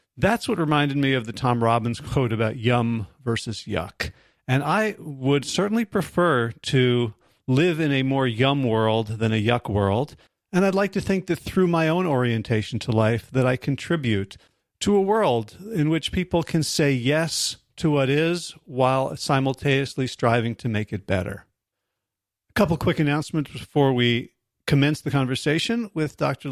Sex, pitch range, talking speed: male, 125-170 Hz, 165 wpm